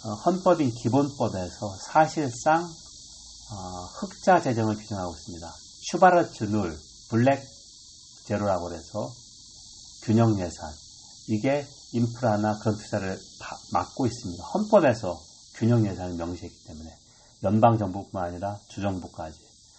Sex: male